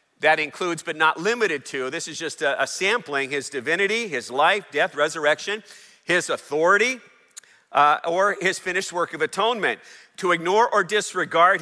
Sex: male